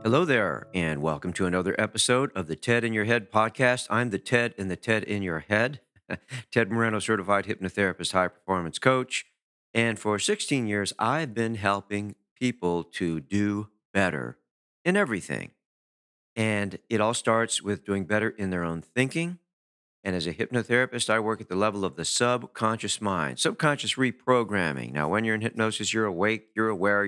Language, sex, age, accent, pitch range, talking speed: English, male, 50-69, American, 95-115 Hz, 170 wpm